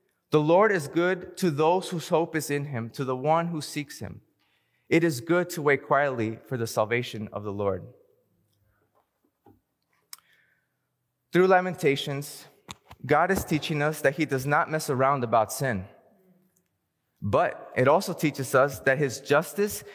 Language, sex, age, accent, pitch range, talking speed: English, male, 20-39, American, 135-175 Hz, 155 wpm